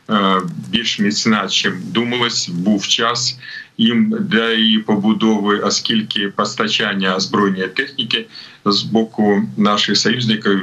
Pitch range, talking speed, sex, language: 100-120 Hz, 100 wpm, male, Ukrainian